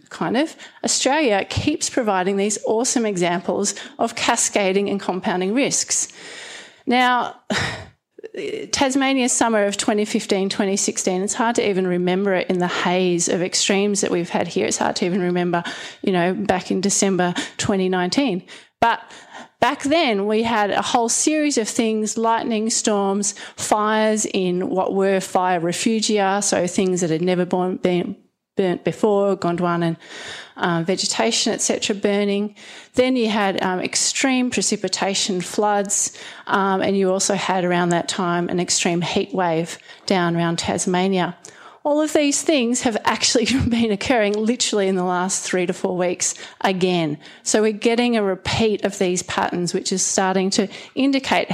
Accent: Australian